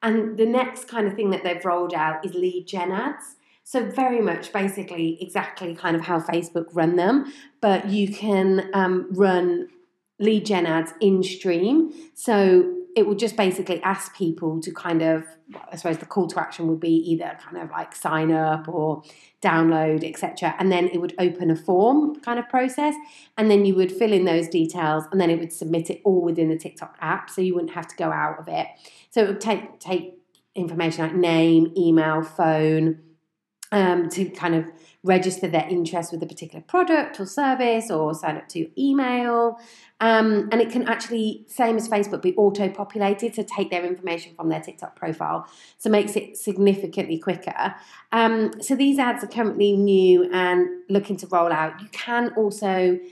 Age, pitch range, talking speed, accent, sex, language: 30-49, 170-215 Hz, 190 wpm, British, female, English